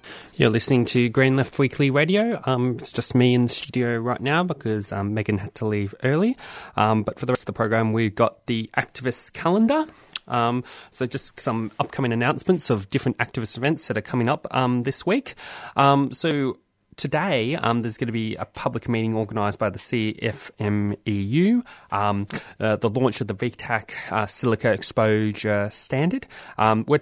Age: 20-39